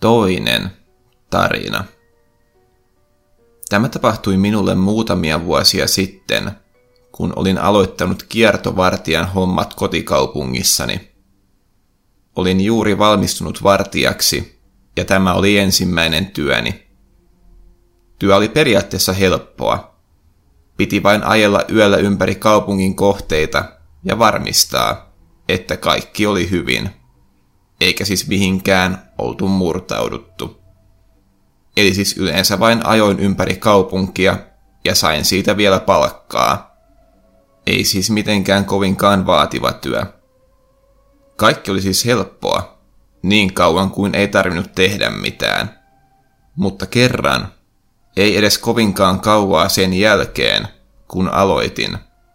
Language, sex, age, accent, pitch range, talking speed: Finnish, male, 30-49, native, 95-105 Hz, 95 wpm